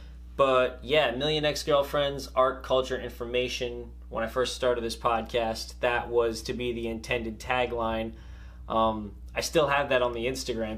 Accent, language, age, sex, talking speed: American, English, 20-39, male, 155 wpm